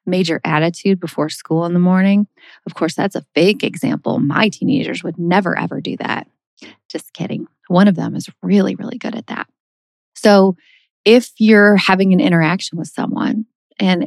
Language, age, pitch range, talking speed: English, 30-49, 160-200 Hz, 170 wpm